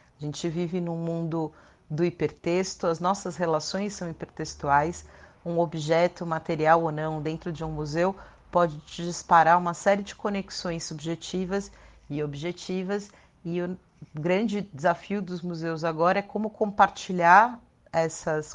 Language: Portuguese